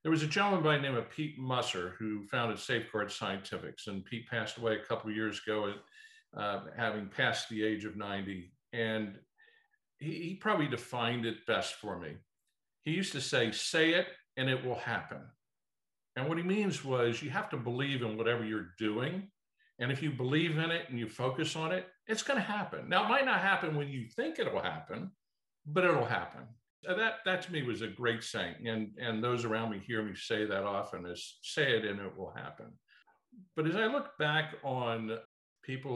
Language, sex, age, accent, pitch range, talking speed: English, male, 50-69, American, 105-150 Hz, 205 wpm